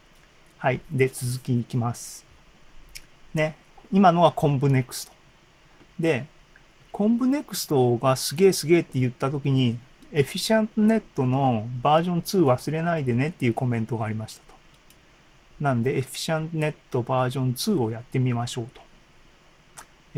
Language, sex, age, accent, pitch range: Japanese, male, 40-59, native, 125-170 Hz